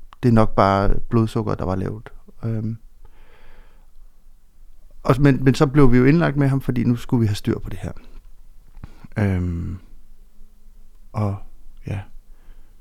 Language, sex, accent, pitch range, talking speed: Danish, male, native, 95-115 Hz, 145 wpm